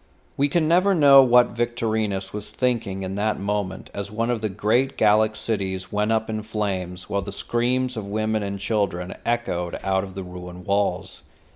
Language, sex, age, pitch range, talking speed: English, male, 40-59, 95-125 Hz, 180 wpm